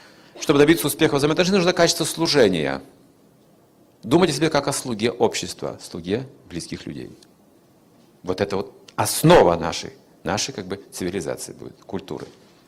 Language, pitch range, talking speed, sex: Russian, 100-155 Hz, 130 wpm, male